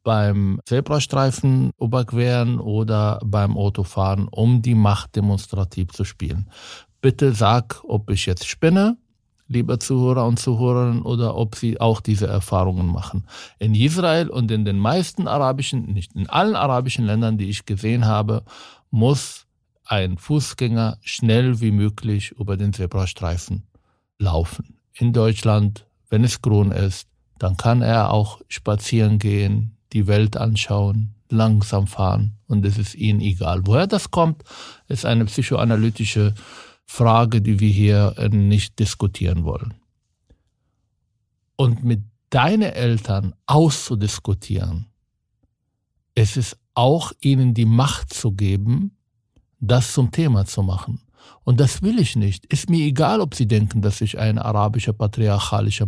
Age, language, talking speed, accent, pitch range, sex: 50-69, German, 135 wpm, German, 105-125 Hz, male